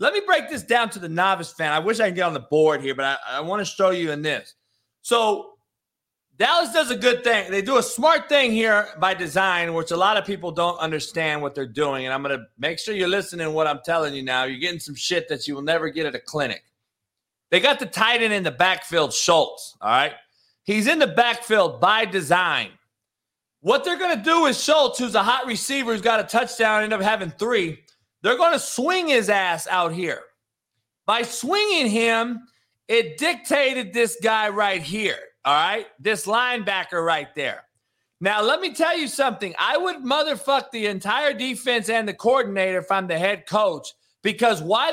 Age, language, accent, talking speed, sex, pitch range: 30-49, English, American, 210 wpm, male, 175-250 Hz